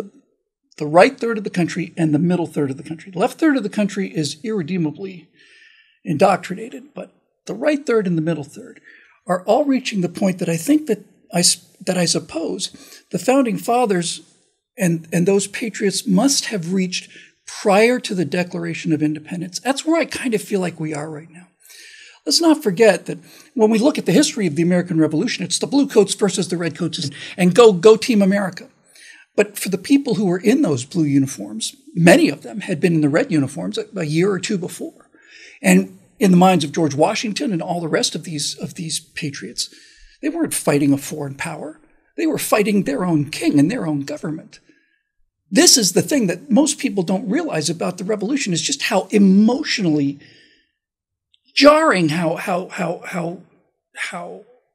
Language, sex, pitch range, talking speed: English, male, 165-240 Hz, 190 wpm